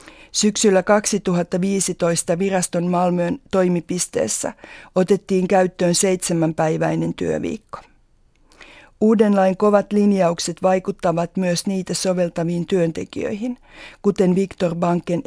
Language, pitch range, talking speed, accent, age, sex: Finnish, 175-200 Hz, 80 wpm, native, 50-69, female